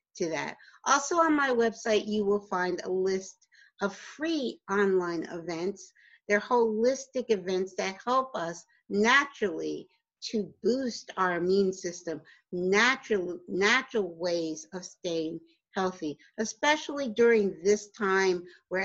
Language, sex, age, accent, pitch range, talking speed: English, female, 50-69, American, 175-210 Hz, 120 wpm